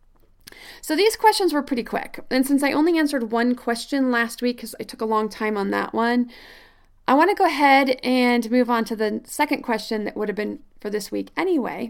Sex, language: female, English